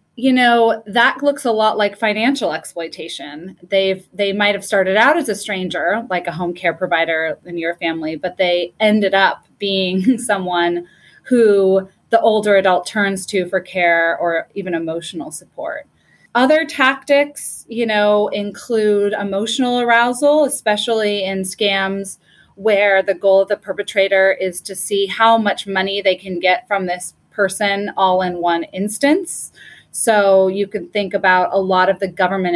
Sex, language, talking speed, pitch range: female, English, 160 wpm, 185-225 Hz